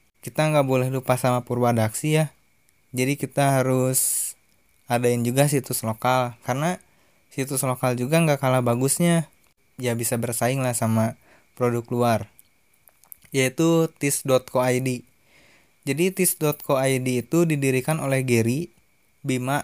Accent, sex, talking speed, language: native, male, 115 wpm, Indonesian